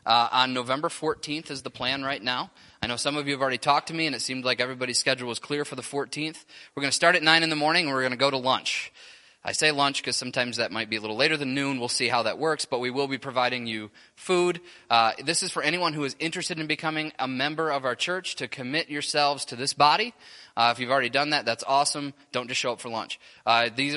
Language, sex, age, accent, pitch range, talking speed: English, male, 20-39, American, 120-150 Hz, 270 wpm